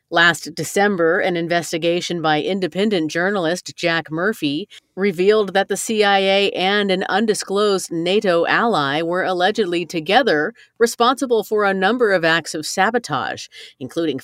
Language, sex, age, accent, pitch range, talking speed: English, female, 40-59, American, 160-205 Hz, 125 wpm